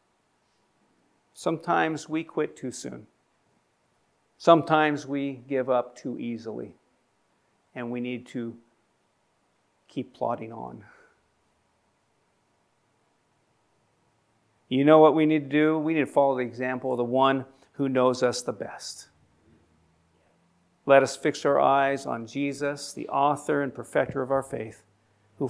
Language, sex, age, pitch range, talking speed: English, male, 50-69, 115-145 Hz, 125 wpm